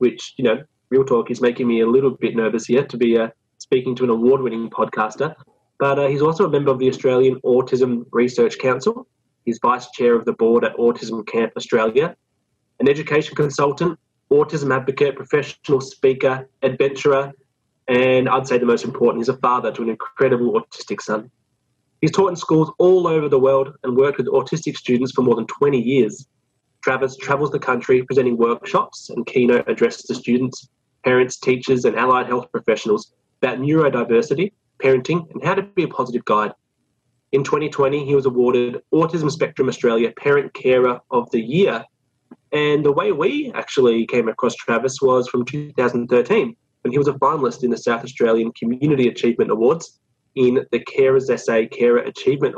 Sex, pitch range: male, 125-150 Hz